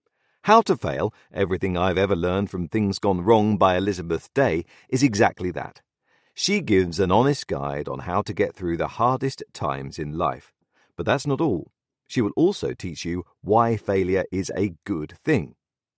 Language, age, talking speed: English, 40-59, 175 wpm